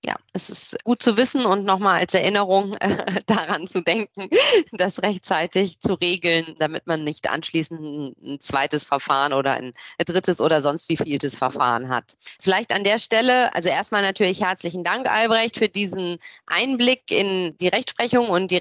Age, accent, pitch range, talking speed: 30-49, German, 180-240 Hz, 170 wpm